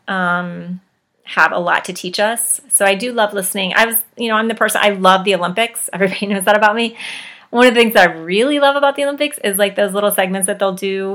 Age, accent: 30-49, American